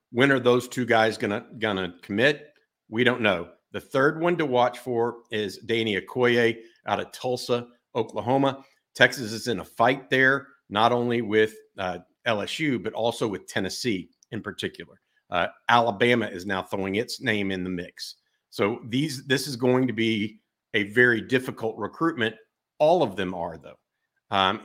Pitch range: 105-125 Hz